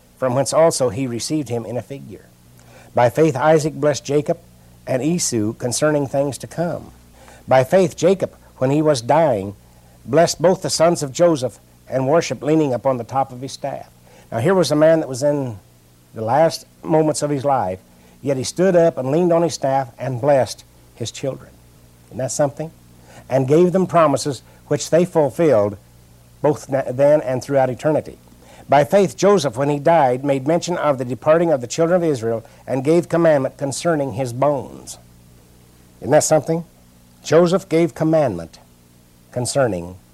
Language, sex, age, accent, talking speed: English, male, 60-79, American, 170 wpm